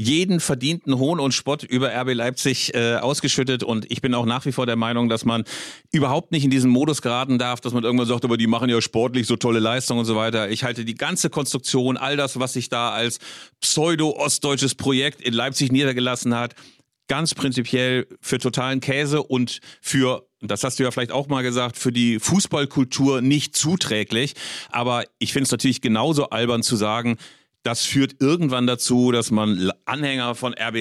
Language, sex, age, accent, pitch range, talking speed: German, male, 40-59, German, 120-140 Hz, 190 wpm